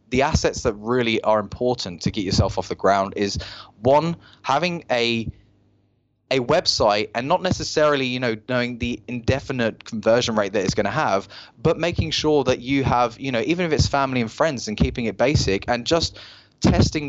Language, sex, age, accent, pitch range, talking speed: English, male, 20-39, British, 105-130 Hz, 190 wpm